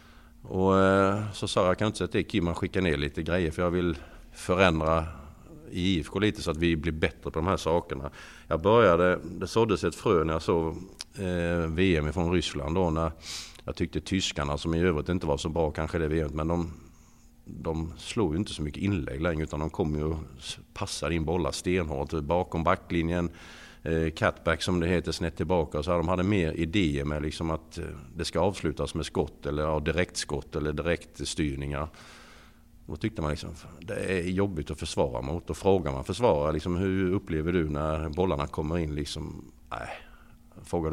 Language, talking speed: English, 190 wpm